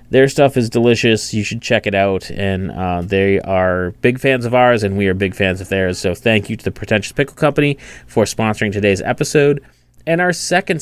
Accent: American